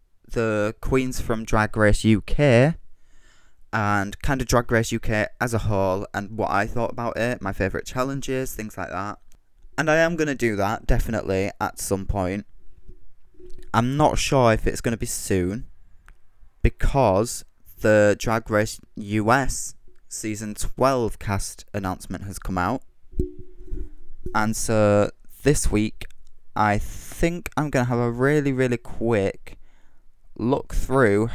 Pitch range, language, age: 95-120 Hz, English, 20-39